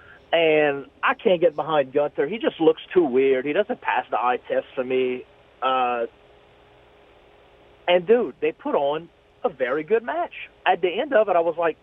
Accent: American